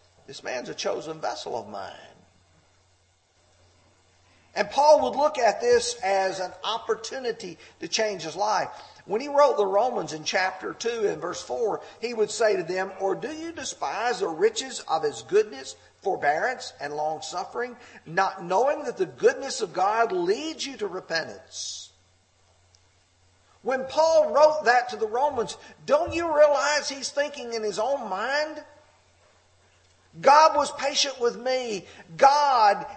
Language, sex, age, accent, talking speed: English, male, 50-69, American, 145 wpm